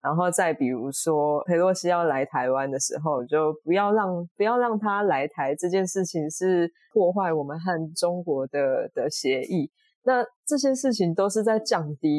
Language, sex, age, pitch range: Chinese, female, 20-39, 150-195 Hz